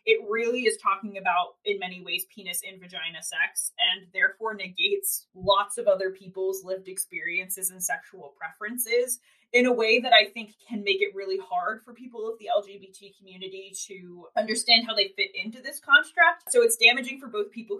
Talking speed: 185 wpm